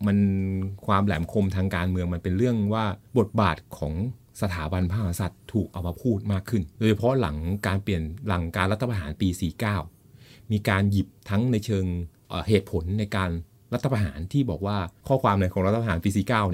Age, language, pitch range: 30-49, Thai, 95-120 Hz